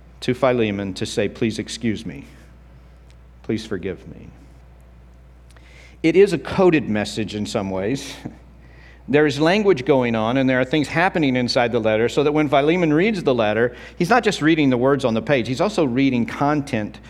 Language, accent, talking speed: English, American, 180 wpm